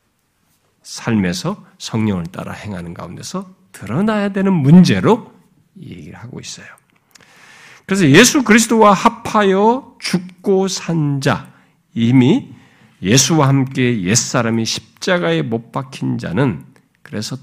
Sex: male